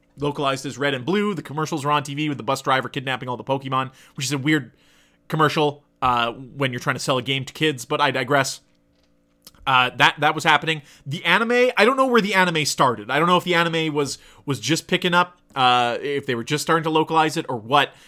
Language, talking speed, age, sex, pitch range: English, 240 wpm, 30-49, male, 130-165 Hz